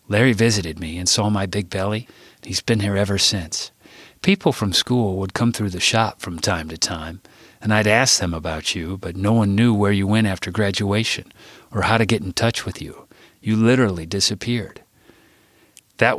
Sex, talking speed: male, 195 wpm